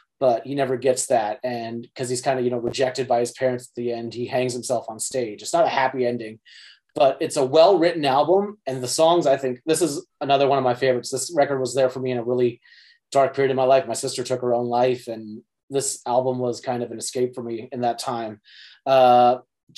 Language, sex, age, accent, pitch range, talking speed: English, male, 30-49, American, 125-145 Hz, 245 wpm